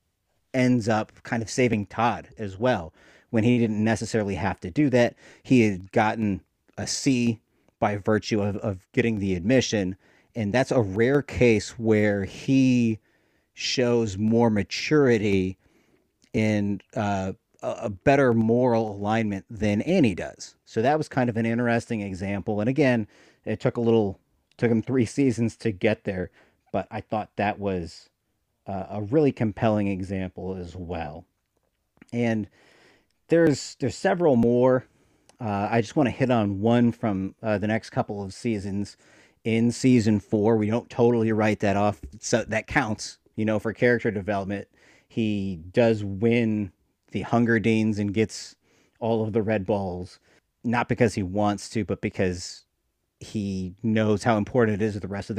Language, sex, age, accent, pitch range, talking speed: English, male, 40-59, American, 100-120 Hz, 160 wpm